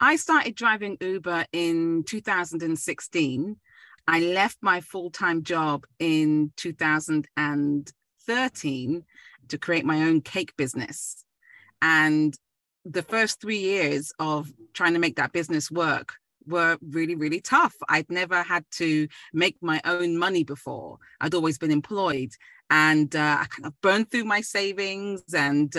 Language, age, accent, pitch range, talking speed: English, 30-49, British, 150-190 Hz, 135 wpm